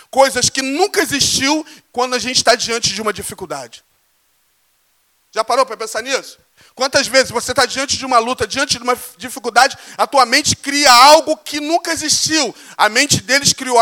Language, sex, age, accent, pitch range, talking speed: Portuguese, male, 40-59, Brazilian, 215-285 Hz, 180 wpm